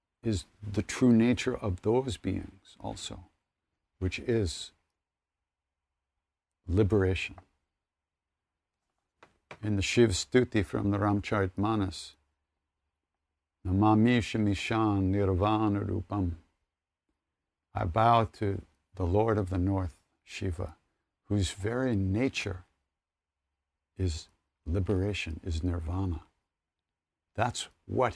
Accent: American